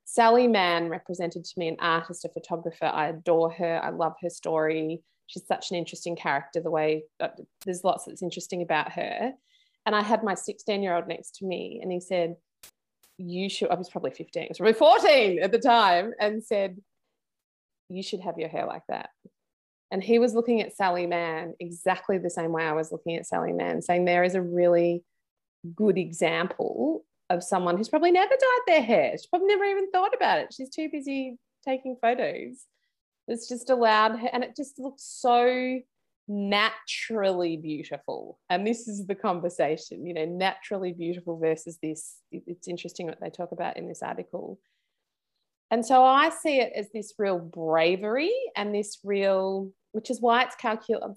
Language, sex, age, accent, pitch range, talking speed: English, female, 20-39, Australian, 170-235 Hz, 185 wpm